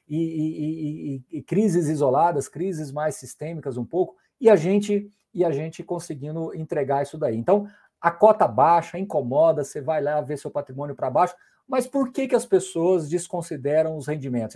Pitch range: 145-185 Hz